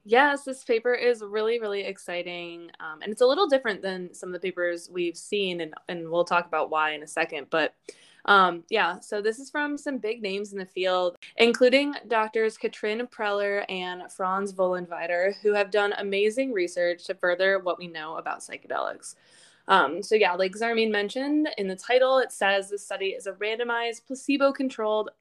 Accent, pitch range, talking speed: American, 180-230 Hz, 185 wpm